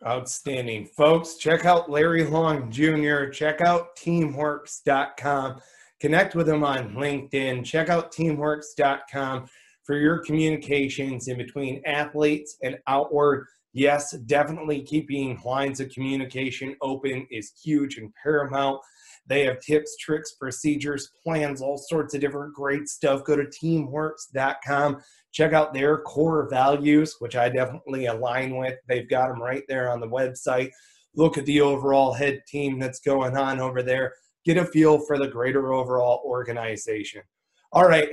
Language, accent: English, American